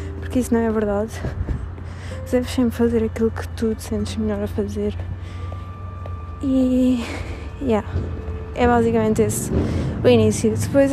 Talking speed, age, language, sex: 120 wpm, 20-39, Arabic, female